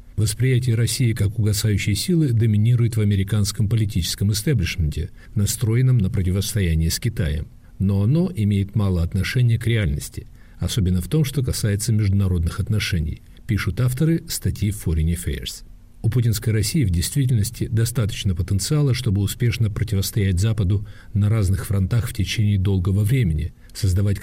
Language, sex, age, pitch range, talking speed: Russian, male, 50-69, 95-120 Hz, 130 wpm